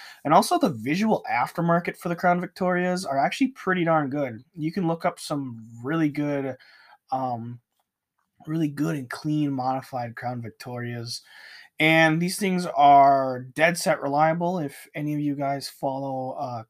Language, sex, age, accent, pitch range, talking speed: English, male, 20-39, American, 125-160 Hz, 155 wpm